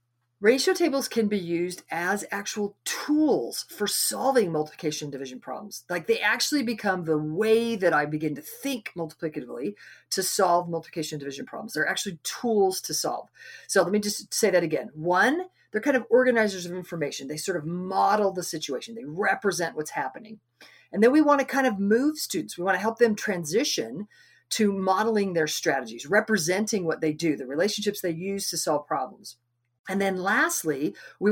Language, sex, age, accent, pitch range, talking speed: English, female, 40-59, American, 155-225 Hz, 180 wpm